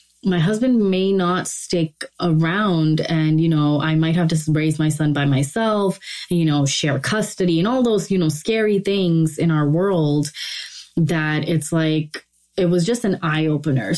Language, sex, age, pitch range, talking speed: English, female, 20-39, 155-180 Hz, 175 wpm